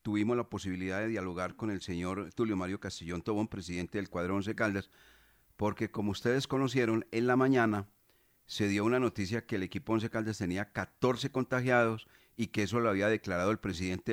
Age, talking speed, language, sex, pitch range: 40-59, 185 wpm, Spanish, male, 100-120 Hz